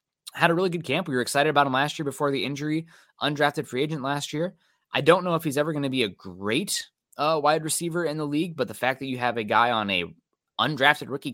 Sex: male